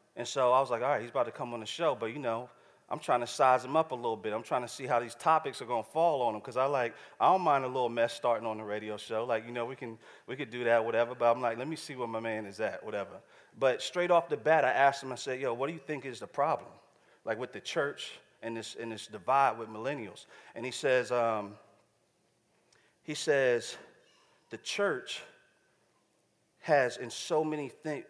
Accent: American